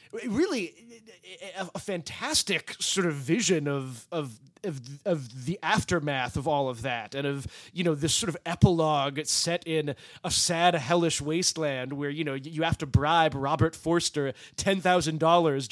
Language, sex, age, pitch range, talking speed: English, male, 30-49, 150-190 Hz, 155 wpm